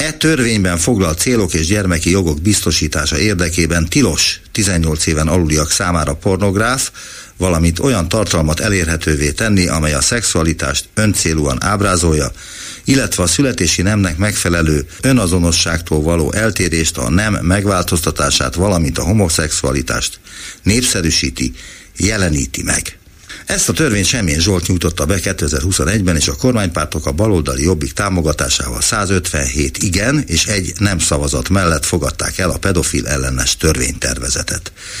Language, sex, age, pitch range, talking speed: Hungarian, male, 60-79, 80-100 Hz, 120 wpm